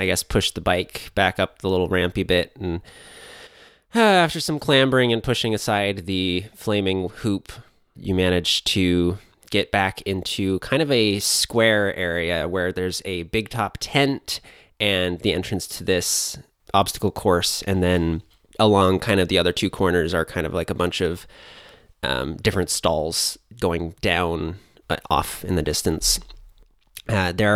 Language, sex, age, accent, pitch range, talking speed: English, male, 20-39, American, 90-120 Hz, 160 wpm